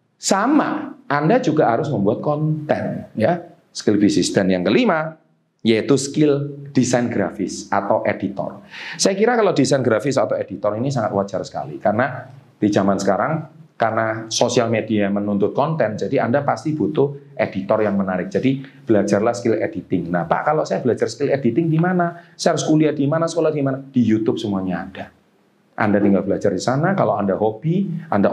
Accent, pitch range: native, 105-160 Hz